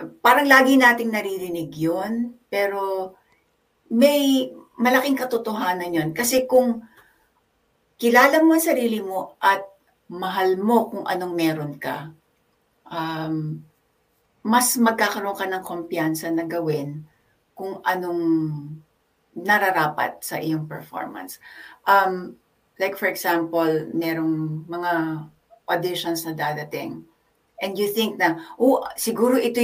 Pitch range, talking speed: 165-230 Hz, 110 wpm